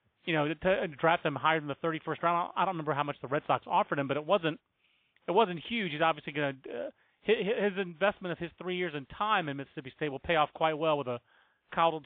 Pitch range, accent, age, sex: 140-170 Hz, American, 30-49, male